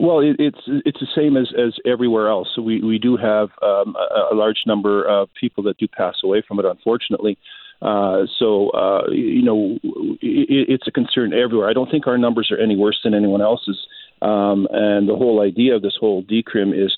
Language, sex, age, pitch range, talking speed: English, male, 40-59, 100-120 Hz, 210 wpm